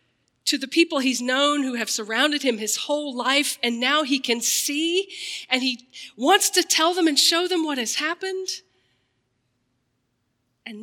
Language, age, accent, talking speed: English, 40-59, American, 165 wpm